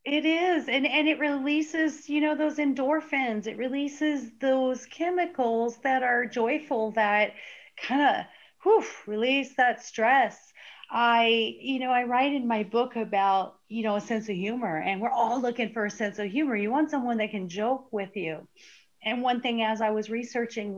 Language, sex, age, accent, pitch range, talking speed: English, female, 30-49, American, 215-275 Hz, 180 wpm